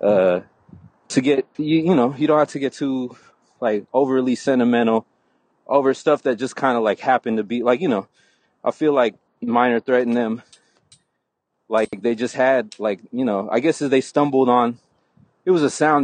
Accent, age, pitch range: American, 30-49, 110-140 Hz